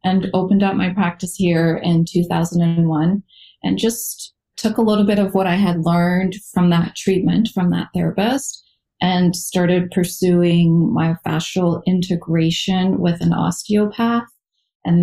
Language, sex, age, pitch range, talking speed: English, female, 30-49, 165-185 Hz, 140 wpm